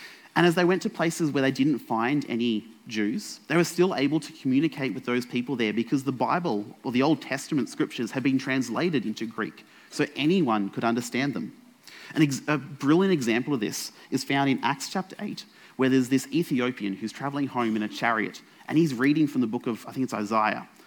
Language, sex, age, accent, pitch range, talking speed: English, male, 30-49, Australian, 120-165 Hz, 205 wpm